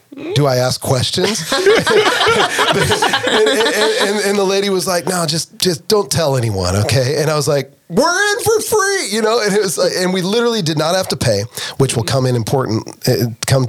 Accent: American